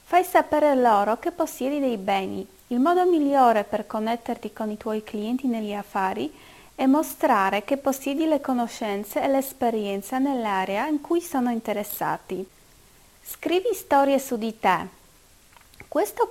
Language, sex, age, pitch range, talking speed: Italian, female, 30-49, 215-290 Hz, 135 wpm